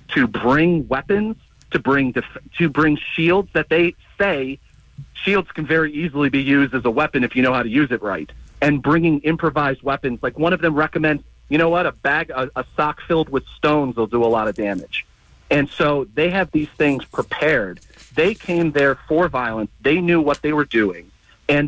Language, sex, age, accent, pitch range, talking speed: English, male, 40-59, American, 130-165 Hz, 205 wpm